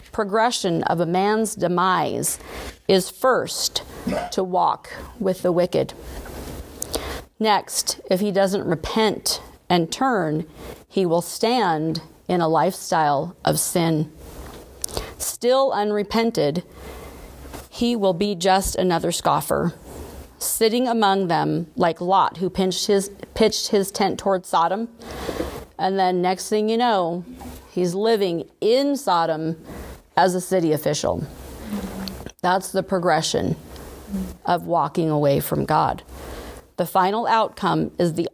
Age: 40-59